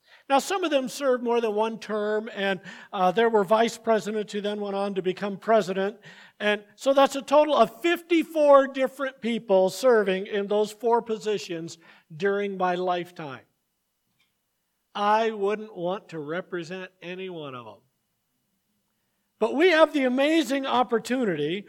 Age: 50-69